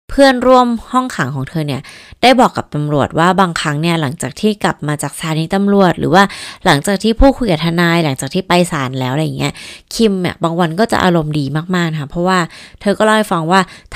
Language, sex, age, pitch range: Thai, female, 20-39, 155-210 Hz